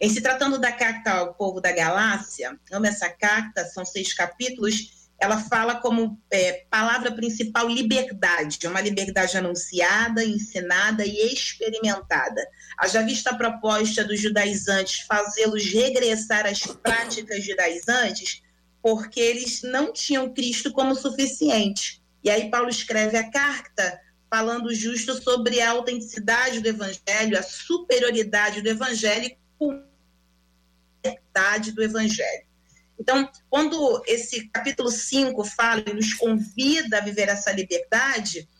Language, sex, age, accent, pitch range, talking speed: Portuguese, female, 30-49, Brazilian, 210-260 Hz, 125 wpm